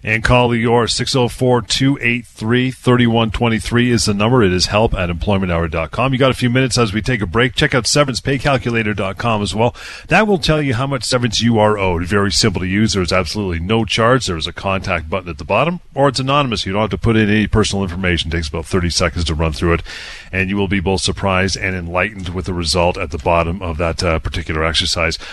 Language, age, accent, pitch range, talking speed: English, 40-59, American, 95-125 Hz, 220 wpm